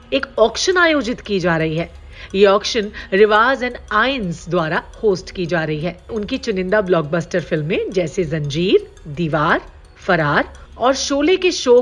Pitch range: 185-270 Hz